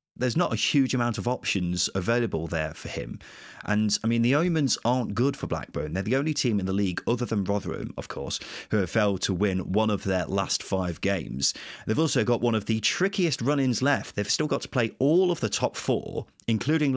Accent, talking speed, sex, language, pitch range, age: British, 225 wpm, male, English, 95-130 Hz, 30-49